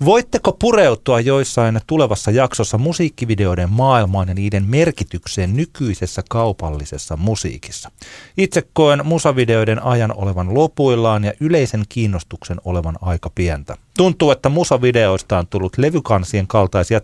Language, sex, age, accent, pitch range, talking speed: Finnish, male, 40-59, native, 95-130 Hz, 115 wpm